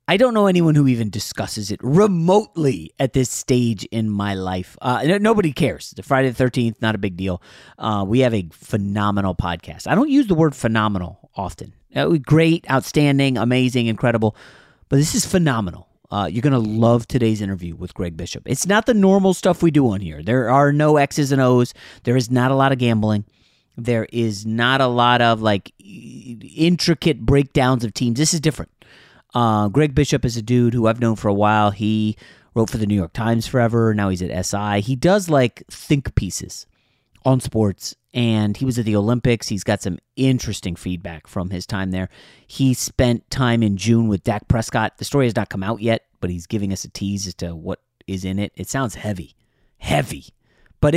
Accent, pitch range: American, 105-135 Hz